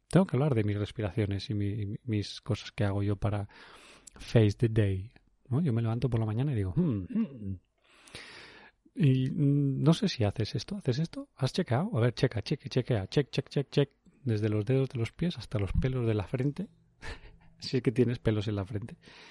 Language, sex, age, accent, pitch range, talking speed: English, male, 30-49, Spanish, 105-145 Hz, 215 wpm